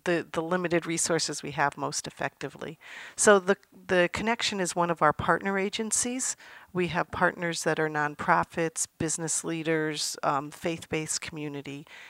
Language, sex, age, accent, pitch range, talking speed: English, female, 50-69, American, 145-165 Hz, 145 wpm